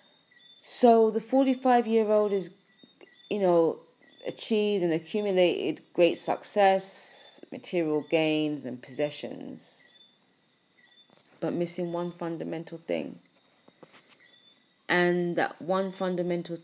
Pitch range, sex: 160-195 Hz, female